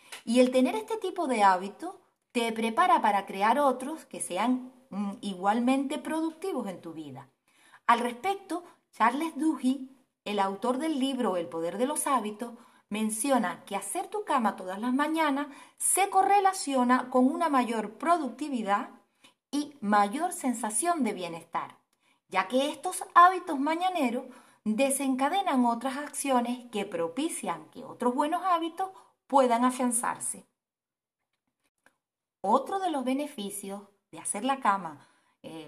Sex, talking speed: female, 130 wpm